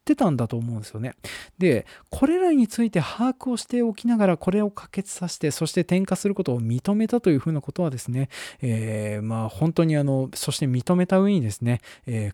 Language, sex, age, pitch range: Japanese, male, 20-39, 120-190 Hz